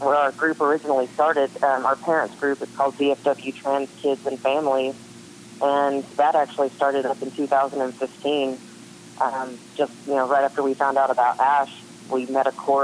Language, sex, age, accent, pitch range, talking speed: English, female, 30-49, American, 130-140 Hz, 180 wpm